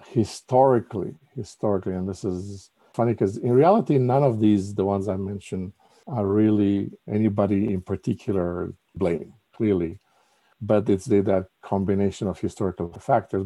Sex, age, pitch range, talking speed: male, 50-69, 95-110 Hz, 130 wpm